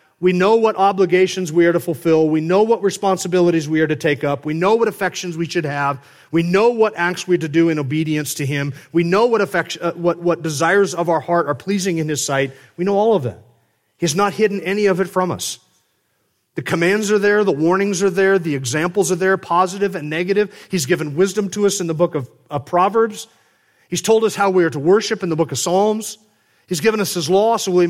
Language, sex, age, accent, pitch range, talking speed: English, male, 40-59, American, 150-195 Hz, 235 wpm